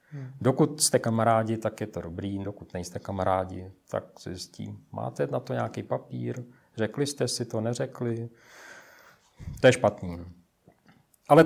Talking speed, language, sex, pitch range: 140 wpm, Czech, male, 105-120 Hz